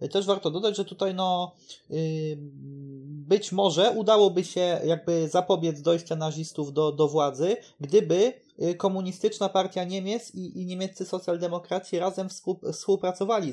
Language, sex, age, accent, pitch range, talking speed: Polish, male, 20-39, native, 150-185 Hz, 120 wpm